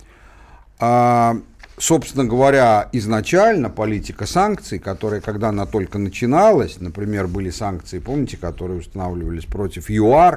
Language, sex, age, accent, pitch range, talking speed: Russian, male, 50-69, native, 90-135 Hz, 105 wpm